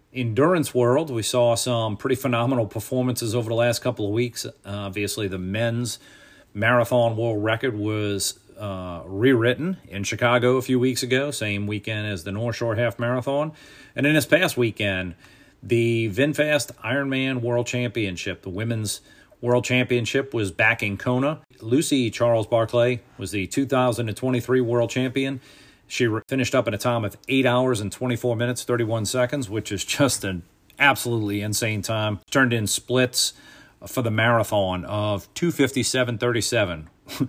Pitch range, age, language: 100-125 Hz, 40-59, English